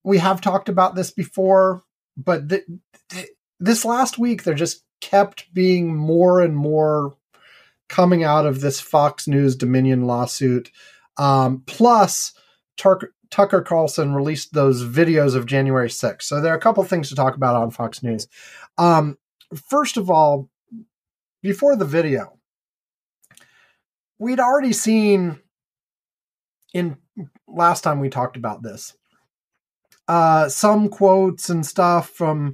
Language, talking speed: English, 130 wpm